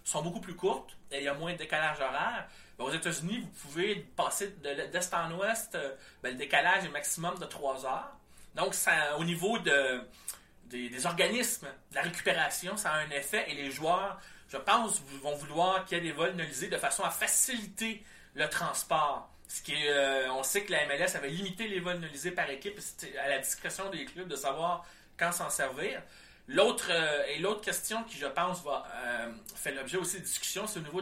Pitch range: 155-195 Hz